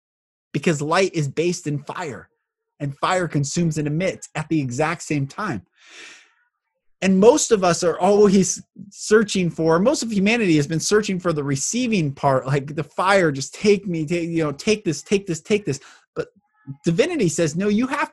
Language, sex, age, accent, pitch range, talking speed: English, male, 20-39, American, 155-210 Hz, 180 wpm